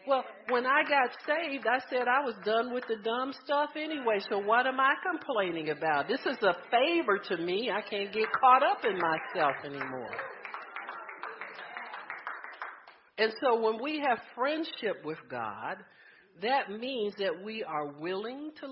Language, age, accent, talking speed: English, 50-69, American, 160 wpm